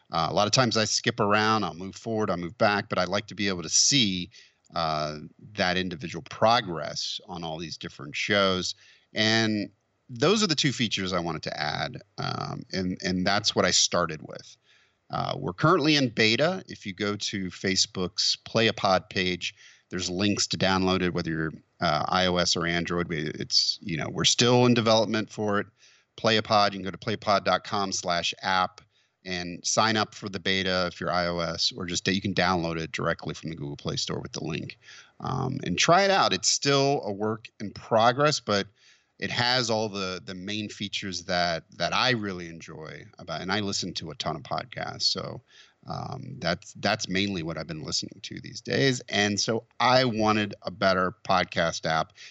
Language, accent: English, American